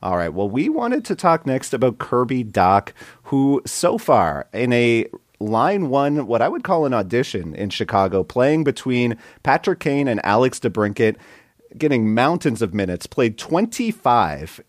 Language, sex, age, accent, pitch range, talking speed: English, male, 30-49, American, 100-125 Hz, 160 wpm